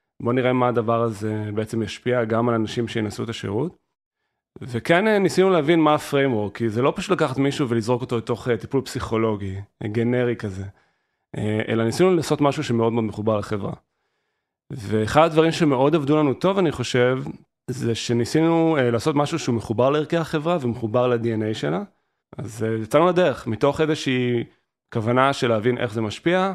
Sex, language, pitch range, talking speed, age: male, Hebrew, 115-140 Hz, 155 wpm, 30-49